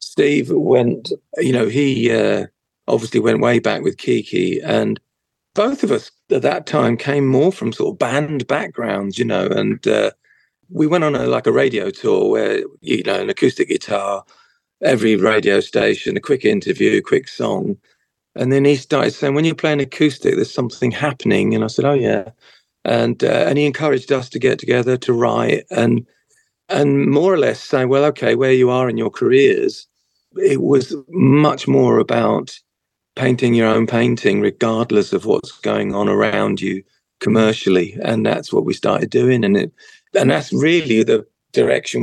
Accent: British